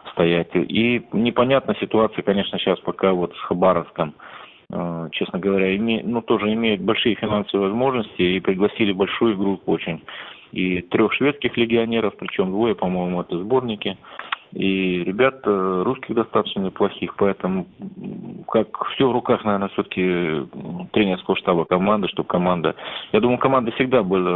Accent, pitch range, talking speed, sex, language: native, 90-120 Hz, 140 wpm, male, Russian